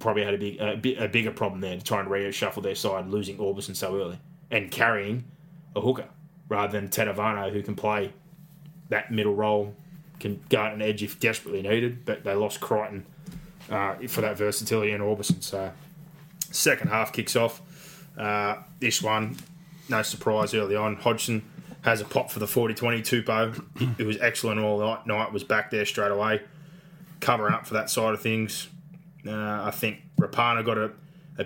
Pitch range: 105-150 Hz